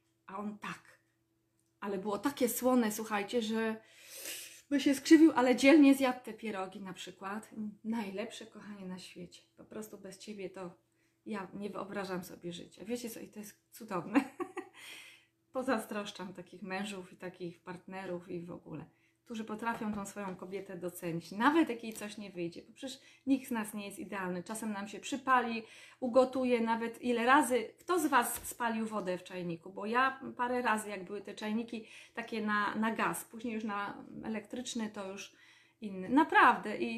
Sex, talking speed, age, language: female, 170 wpm, 20-39, Polish